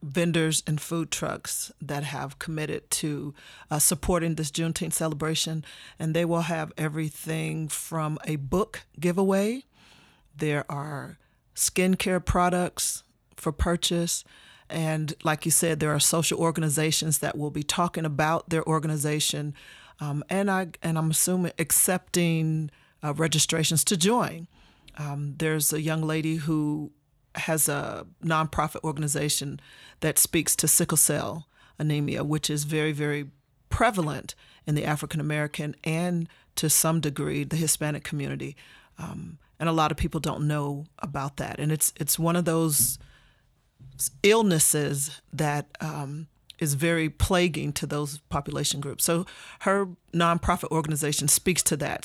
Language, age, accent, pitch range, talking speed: English, 40-59, American, 150-170 Hz, 135 wpm